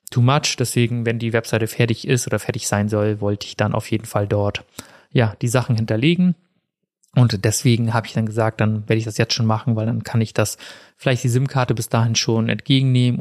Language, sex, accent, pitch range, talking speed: German, male, German, 110-125 Hz, 220 wpm